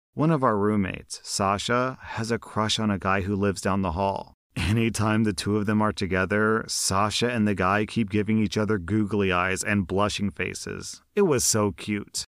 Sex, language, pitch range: male, English, 100-130 Hz